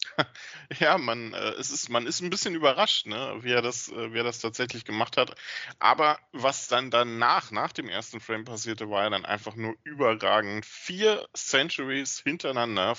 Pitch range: 115-145 Hz